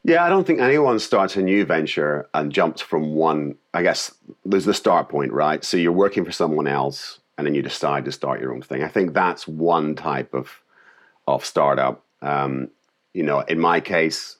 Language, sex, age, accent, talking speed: English, male, 40-59, British, 205 wpm